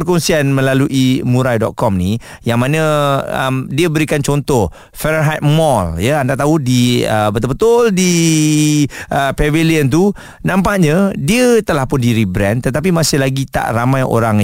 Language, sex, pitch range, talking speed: Malay, male, 110-150 Hz, 140 wpm